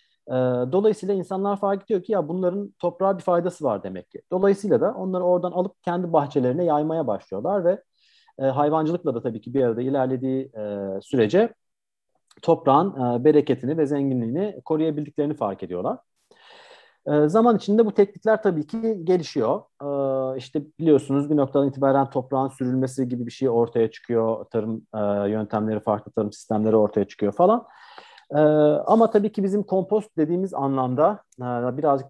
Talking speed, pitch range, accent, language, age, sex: 135 wpm, 110-160 Hz, native, Turkish, 40-59, male